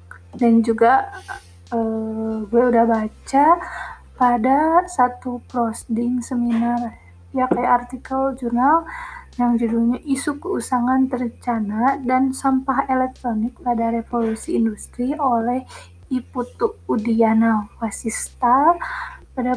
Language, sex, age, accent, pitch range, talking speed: Indonesian, female, 20-39, native, 230-265 Hz, 90 wpm